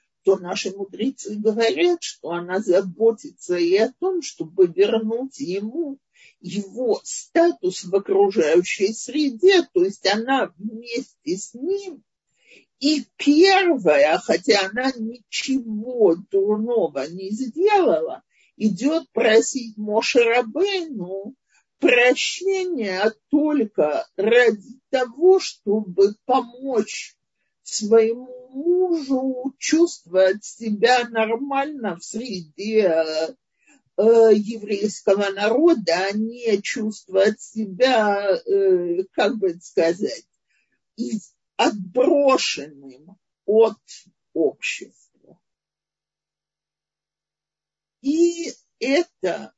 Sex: male